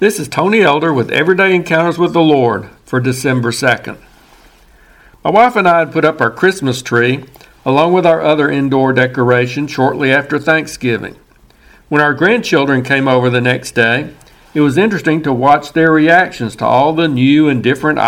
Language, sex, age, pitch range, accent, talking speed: English, male, 60-79, 125-160 Hz, American, 175 wpm